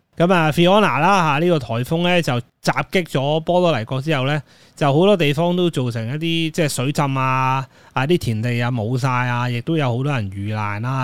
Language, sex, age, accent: Chinese, male, 20-39, native